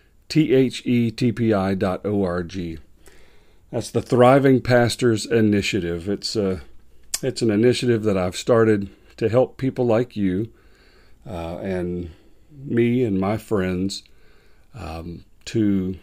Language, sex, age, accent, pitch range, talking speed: English, male, 40-59, American, 90-115 Hz, 110 wpm